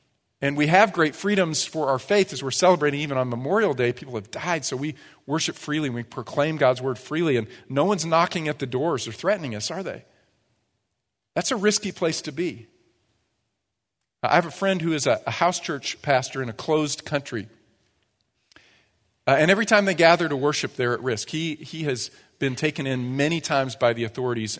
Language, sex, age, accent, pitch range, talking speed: English, male, 40-59, American, 110-150 Hz, 200 wpm